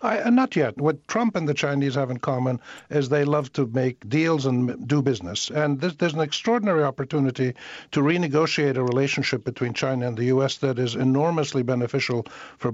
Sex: male